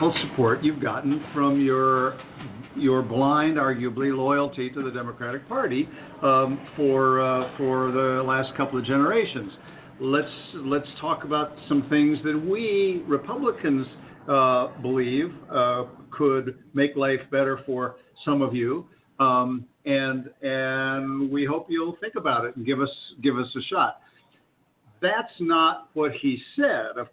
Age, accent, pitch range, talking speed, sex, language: 60-79, American, 130-150 Hz, 140 wpm, male, English